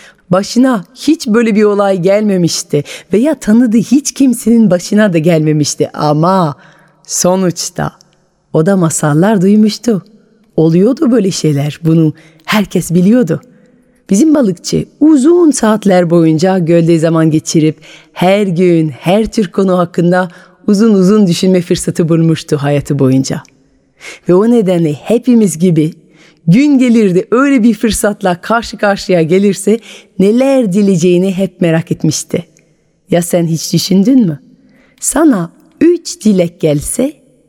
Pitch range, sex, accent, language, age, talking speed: 160-220 Hz, female, native, Turkish, 30-49, 115 wpm